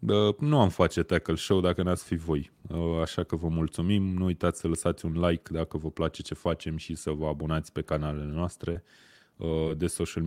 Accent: native